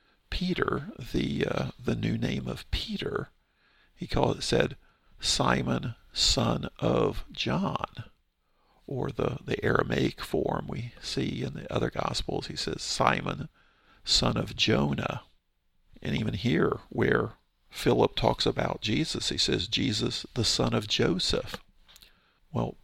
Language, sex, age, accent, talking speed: English, male, 50-69, American, 125 wpm